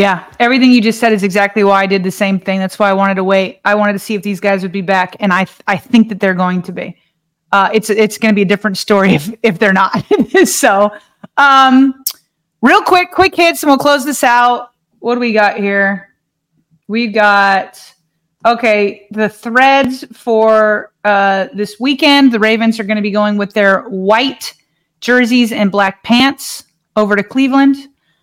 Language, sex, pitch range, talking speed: English, female, 200-255 Hz, 200 wpm